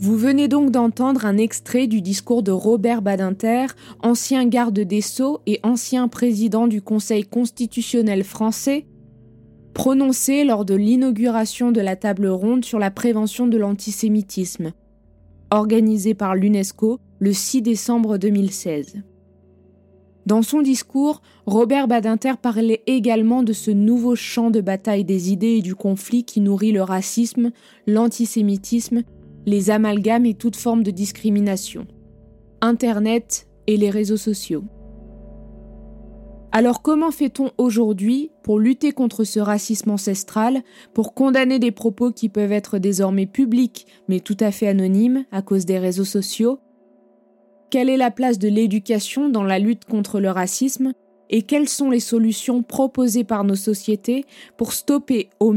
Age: 20-39